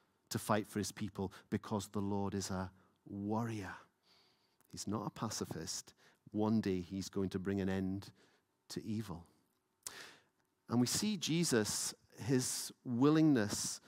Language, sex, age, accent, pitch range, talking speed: English, male, 40-59, British, 100-125 Hz, 135 wpm